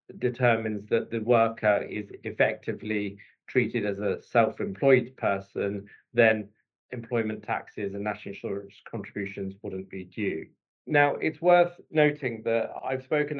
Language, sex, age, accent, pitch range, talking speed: English, male, 50-69, British, 105-125 Hz, 125 wpm